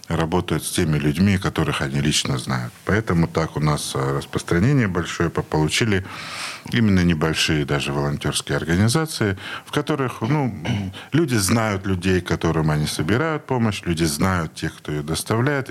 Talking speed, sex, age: 140 wpm, male, 50-69